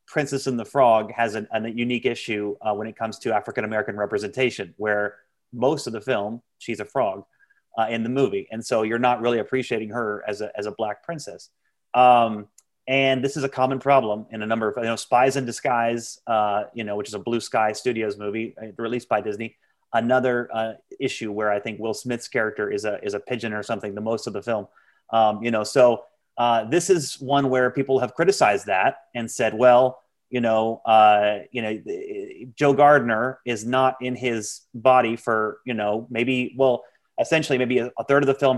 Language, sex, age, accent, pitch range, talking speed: English, male, 30-49, American, 110-130 Hz, 210 wpm